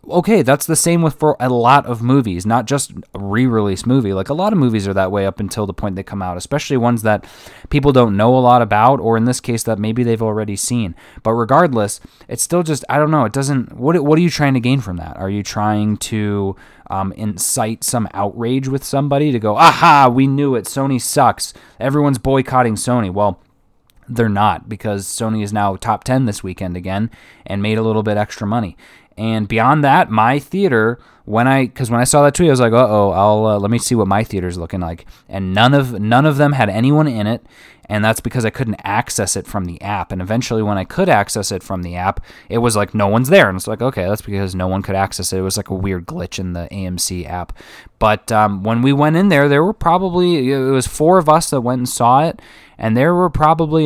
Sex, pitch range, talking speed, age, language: male, 100-135 Hz, 240 wpm, 20-39, English